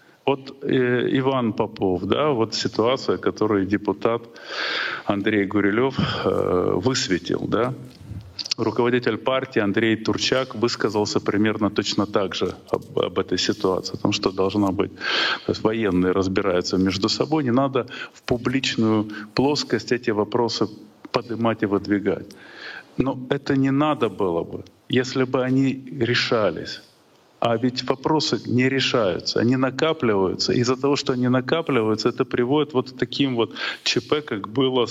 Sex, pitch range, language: male, 105-130 Hz, Russian